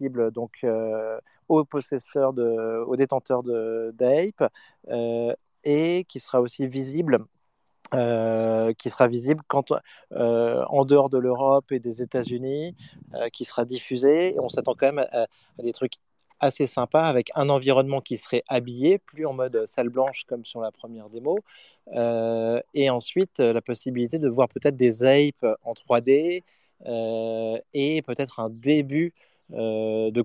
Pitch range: 115-140 Hz